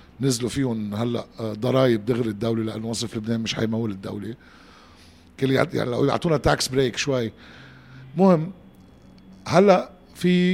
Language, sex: Arabic, male